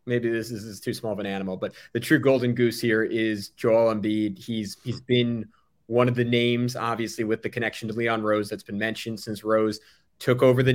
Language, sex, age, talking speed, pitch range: English, male, 30-49, 220 wpm, 115-135 Hz